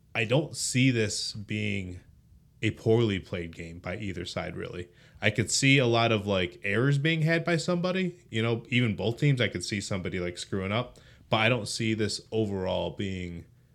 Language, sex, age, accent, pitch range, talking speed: English, male, 20-39, American, 90-115 Hz, 190 wpm